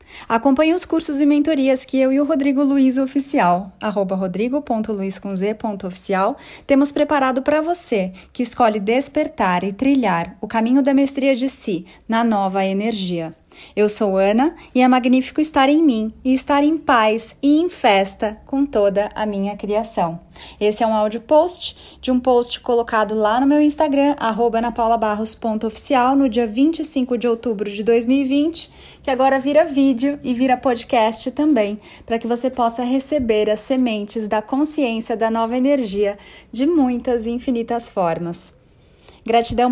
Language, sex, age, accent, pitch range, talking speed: Portuguese, female, 30-49, Brazilian, 220-275 Hz, 150 wpm